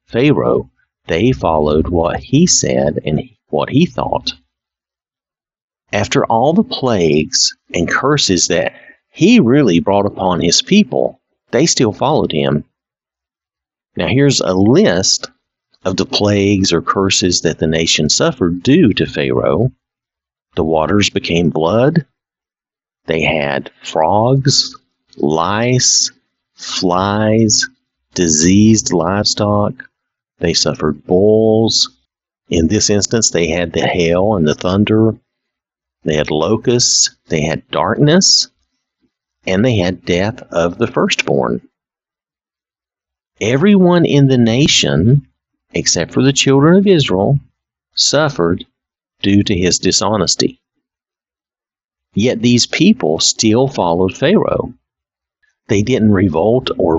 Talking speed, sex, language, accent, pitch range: 110 wpm, male, English, American, 85-130 Hz